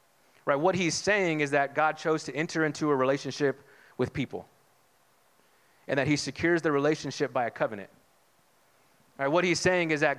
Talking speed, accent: 175 wpm, American